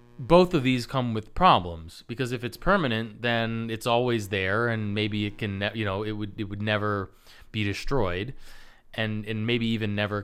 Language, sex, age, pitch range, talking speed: English, male, 20-39, 105-135 Hz, 195 wpm